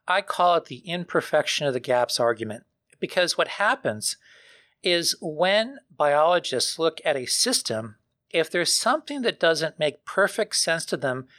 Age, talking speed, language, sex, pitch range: 40-59, 155 wpm, English, male, 140-180 Hz